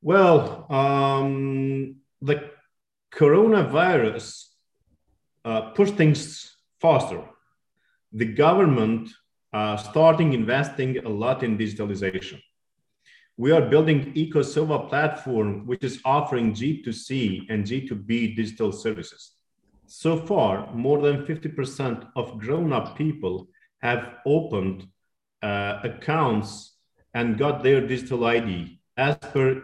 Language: German